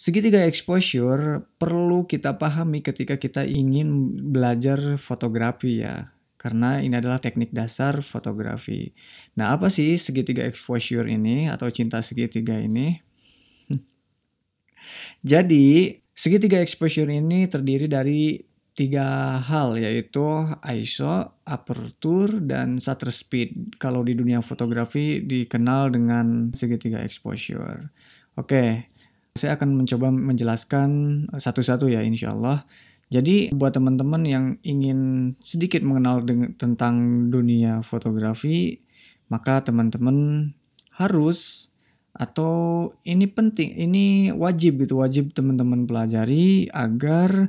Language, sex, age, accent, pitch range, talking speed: Indonesian, male, 20-39, native, 120-155 Hz, 105 wpm